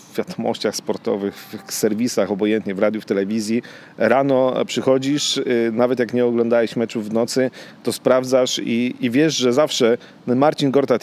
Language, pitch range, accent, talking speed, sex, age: Polish, 105-125 Hz, native, 145 wpm, male, 40-59